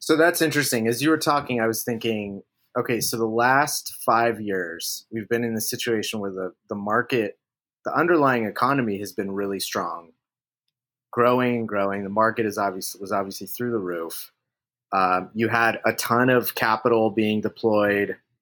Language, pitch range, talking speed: English, 100-125 Hz, 175 wpm